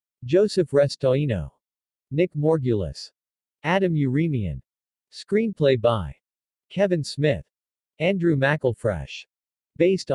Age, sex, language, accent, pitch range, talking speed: 50-69, male, English, American, 100-165 Hz, 75 wpm